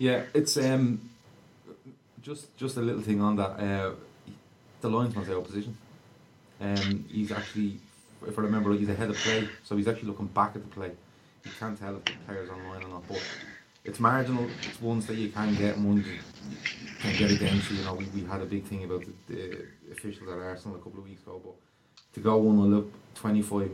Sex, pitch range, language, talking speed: male, 100-115 Hz, English, 205 wpm